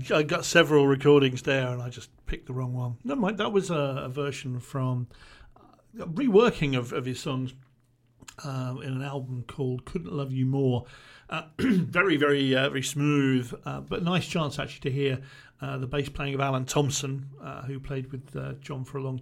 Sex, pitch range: male, 130-150 Hz